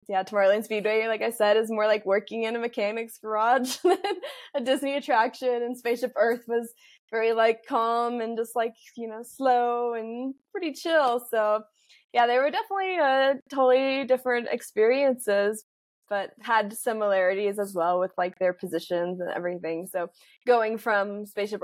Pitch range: 185-235 Hz